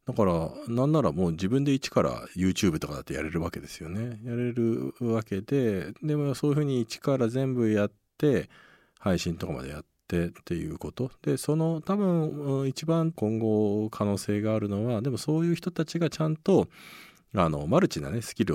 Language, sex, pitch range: Japanese, male, 85-145 Hz